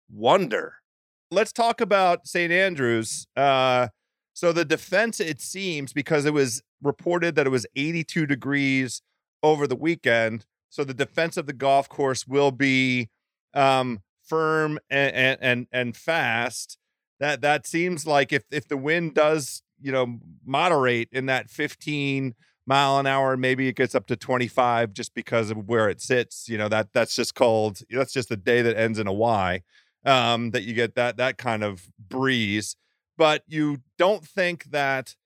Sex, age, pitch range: male, 30-49, 125-155 Hz